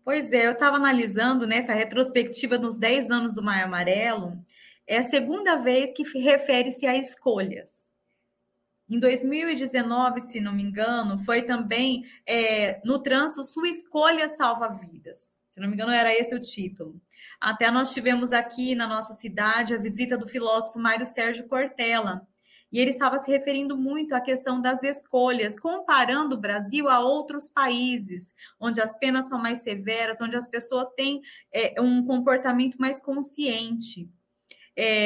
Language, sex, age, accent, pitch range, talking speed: Portuguese, female, 20-39, Brazilian, 230-270 Hz, 150 wpm